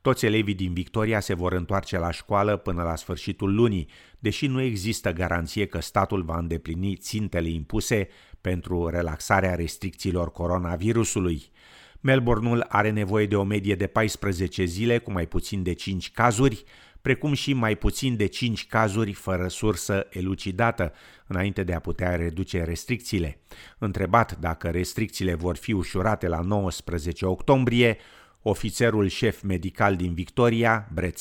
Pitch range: 90-110 Hz